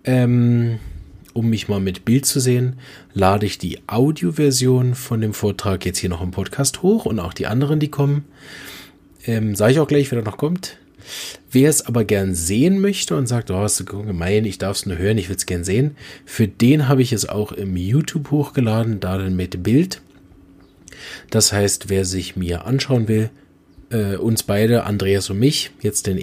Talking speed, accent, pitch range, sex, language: 190 wpm, German, 95-130 Hz, male, German